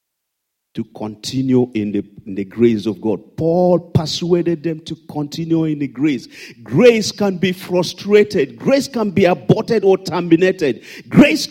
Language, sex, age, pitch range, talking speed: English, male, 50-69, 150-220 Hz, 145 wpm